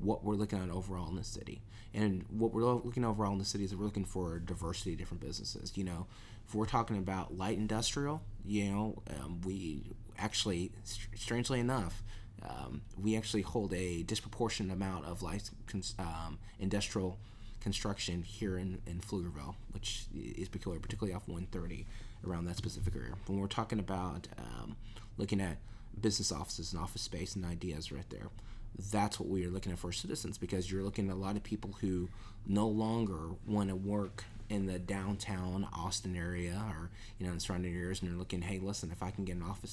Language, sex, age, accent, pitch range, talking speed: English, male, 20-39, American, 90-110 Hz, 190 wpm